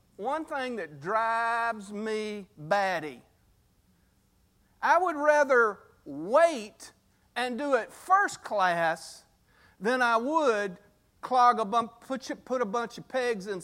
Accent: American